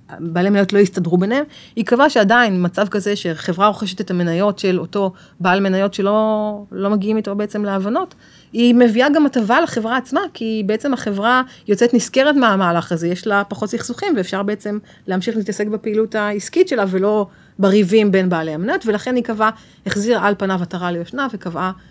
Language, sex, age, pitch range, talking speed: Hebrew, female, 30-49, 170-215 Hz, 170 wpm